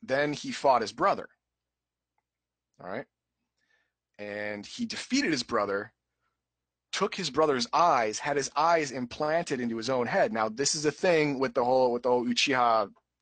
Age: 30-49